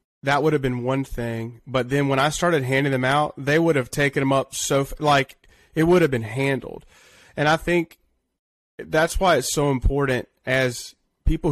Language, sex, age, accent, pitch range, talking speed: English, male, 30-49, American, 125-150 Hz, 195 wpm